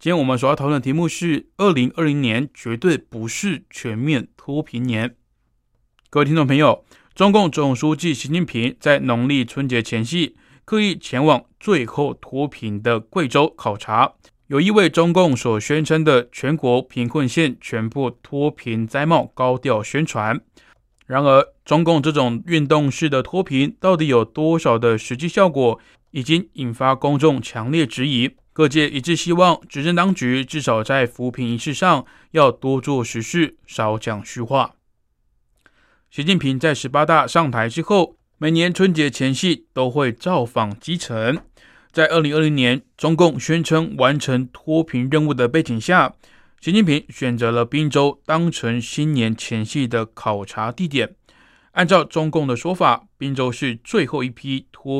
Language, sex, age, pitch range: Chinese, male, 20-39, 125-160 Hz